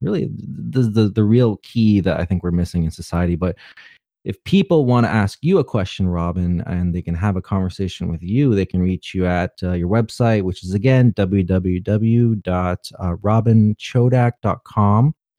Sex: male